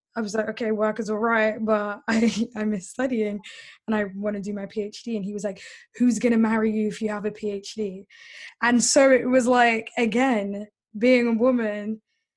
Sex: female